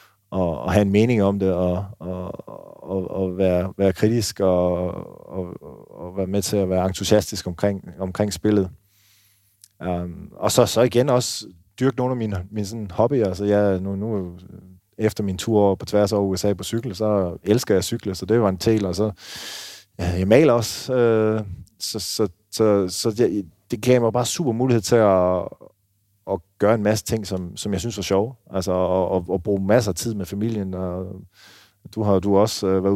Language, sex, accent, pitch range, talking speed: Danish, male, native, 95-105 Hz, 200 wpm